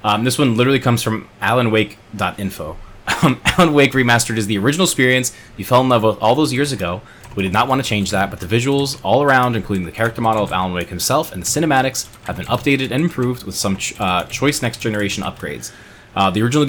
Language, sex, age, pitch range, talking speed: English, male, 20-39, 95-120 Hz, 220 wpm